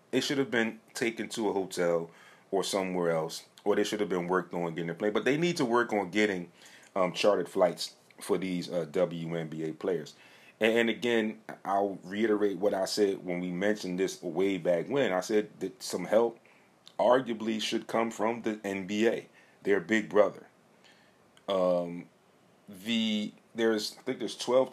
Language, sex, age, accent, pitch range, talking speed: English, male, 30-49, American, 90-110 Hz, 175 wpm